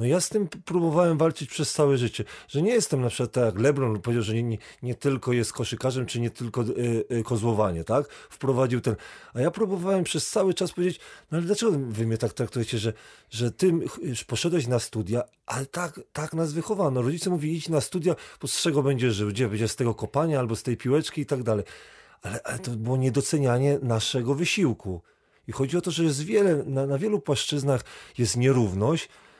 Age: 40-59